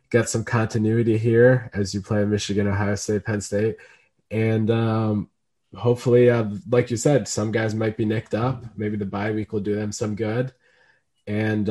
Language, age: English, 20-39